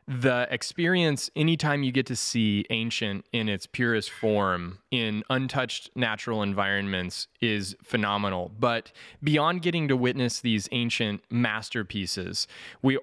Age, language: 20-39, English